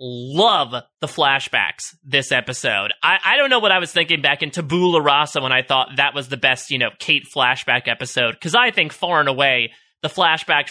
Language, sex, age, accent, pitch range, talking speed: English, male, 30-49, American, 140-190 Hz, 205 wpm